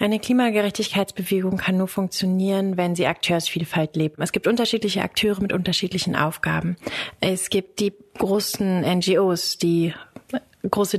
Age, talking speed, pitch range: 30-49, 125 wpm, 175-205 Hz